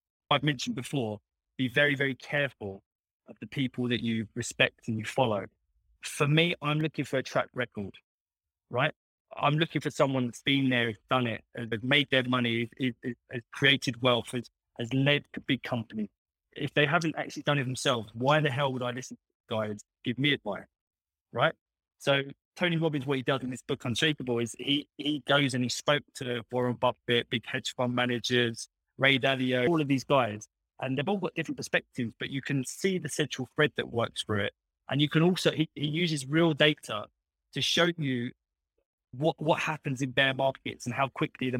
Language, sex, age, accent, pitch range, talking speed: English, male, 20-39, British, 120-145 Hz, 195 wpm